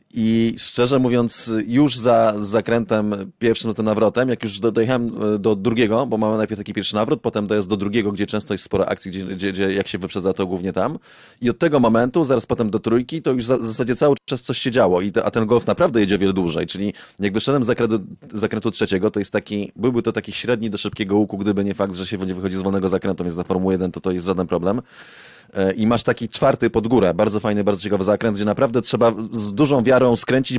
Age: 30-49